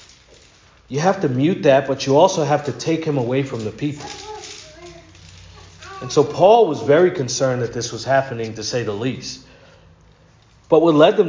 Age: 40-59